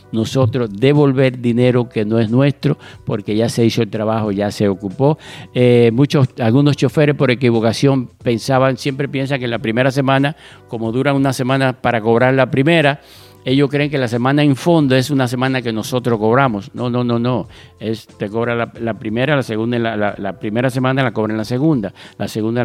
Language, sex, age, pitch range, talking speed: English, male, 50-69, 115-145 Hz, 190 wpm